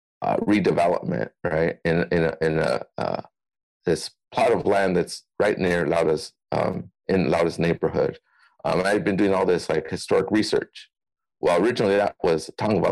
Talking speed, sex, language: 165 wpm, male, English